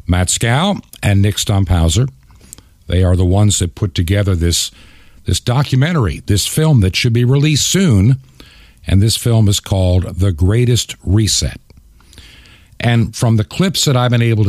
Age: 50-69